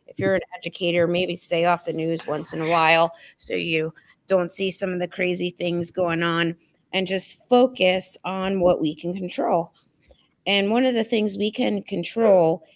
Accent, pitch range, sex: American, 165-200 Hz, female